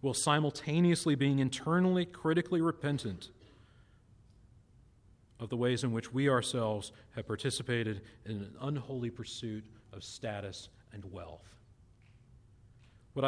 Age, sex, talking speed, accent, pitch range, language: 40-59, male, 110 wpm, American, 110-140 Hz, English